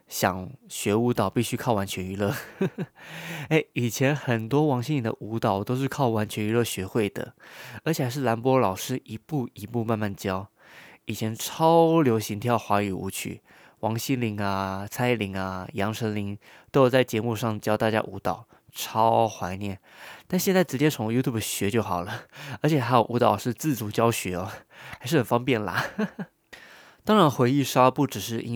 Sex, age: male, 20-39